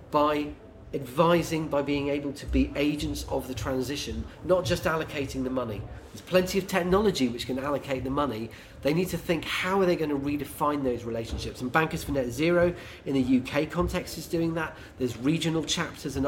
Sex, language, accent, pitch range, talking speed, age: male, English, British, 130-165 Hz, 195 wpm, 40-59